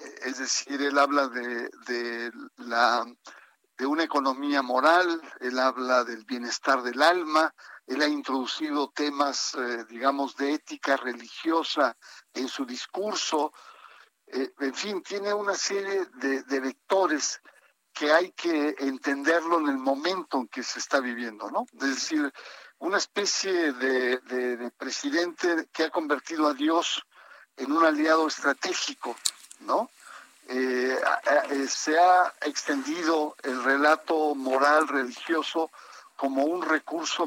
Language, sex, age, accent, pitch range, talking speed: Spanish, male, 60-79, Mexican, 135-195 Hz, 130 wpm